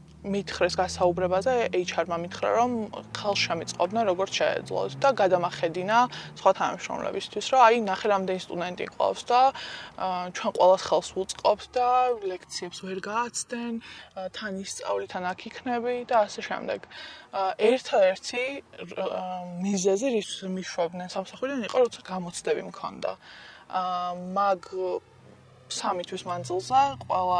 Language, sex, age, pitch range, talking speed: English, female, 20-39, 180-225 Hz, 90 wpm